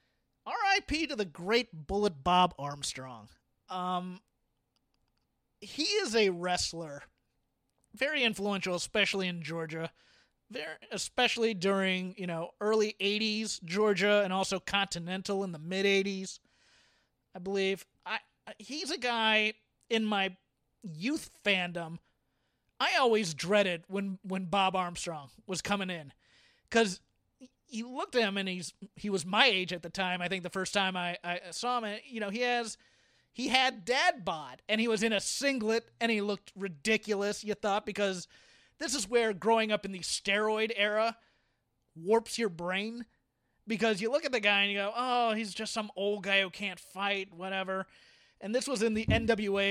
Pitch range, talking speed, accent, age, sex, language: 185-220 Hz, 160 wpm, American, 30-49, male, English